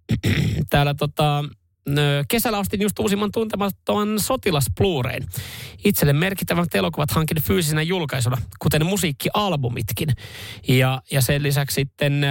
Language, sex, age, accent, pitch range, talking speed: Finnish, male, 30-49, native, 125-165 Hz, 100 wpm